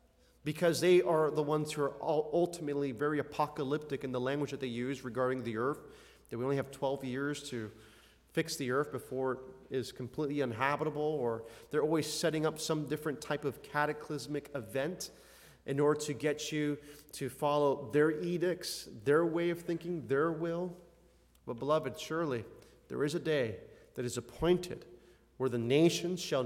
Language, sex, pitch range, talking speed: English, male, 125-165 Hz, 170 wpm